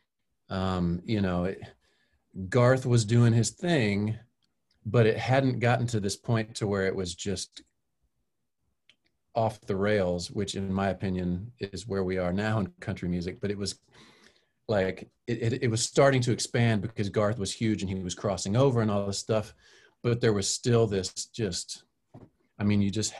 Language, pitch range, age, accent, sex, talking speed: English, 90-110 Hz, 40-59, American, male, 180 wpm